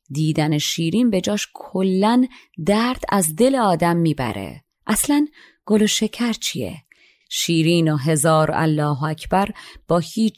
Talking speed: 125 wpm